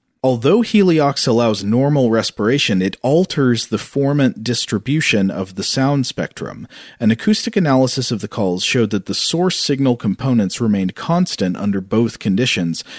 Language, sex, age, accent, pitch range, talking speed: English, male, 40-59, American, 100-130 Hz, 145 wpm